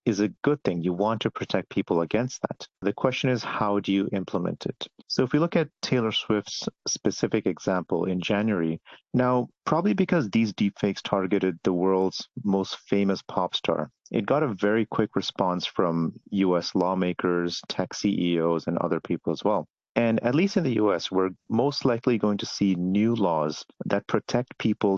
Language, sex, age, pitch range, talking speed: English, male, 40-59, 95-125 Hz, 180 wpm